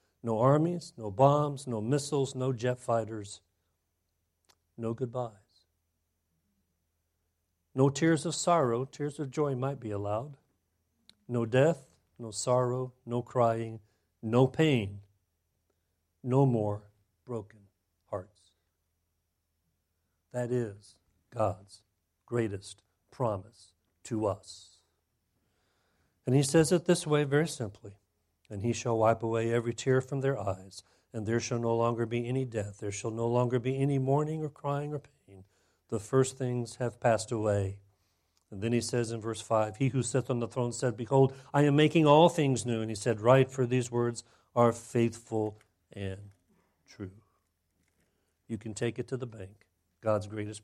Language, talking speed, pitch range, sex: English, 145 wpm, 90-125 Hz, male